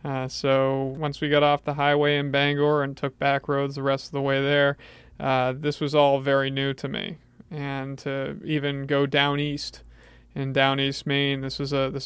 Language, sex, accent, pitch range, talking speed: English, male, American, 135-145 Hz, 195 wpm